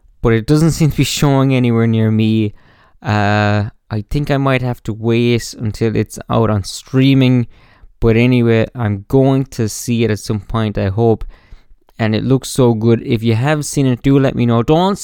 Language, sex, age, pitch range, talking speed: English, male, 20-39, 110-160 Hz, 200 wpm